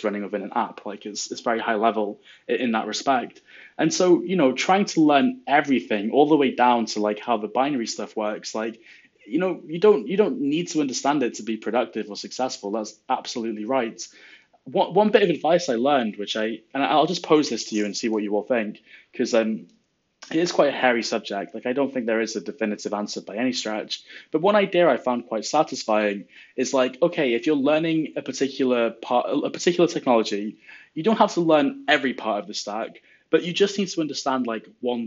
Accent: British